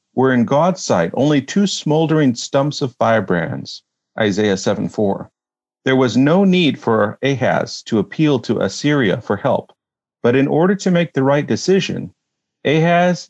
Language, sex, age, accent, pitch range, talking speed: English, male, 40-59, American, 120-165 Hz, 150 wpm